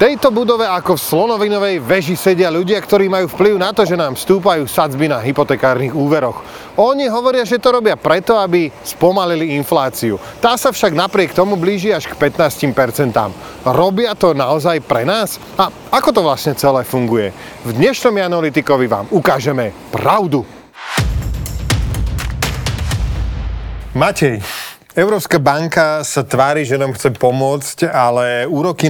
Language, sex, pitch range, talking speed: Slovak, male, 135-185 Hz, 140 wpm